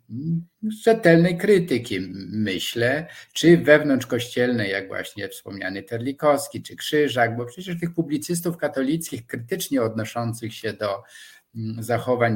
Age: 50-69